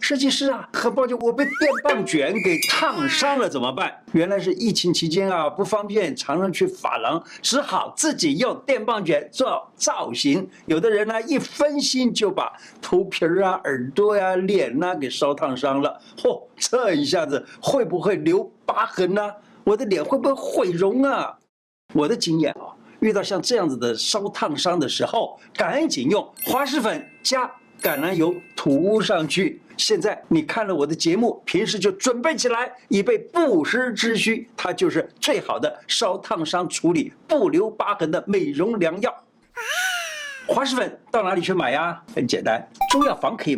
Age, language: 50-69, Chinese